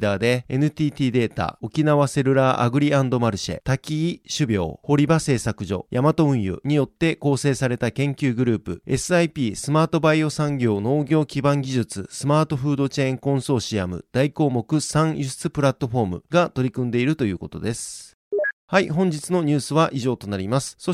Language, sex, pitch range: Japanese, male, 120-155 Hz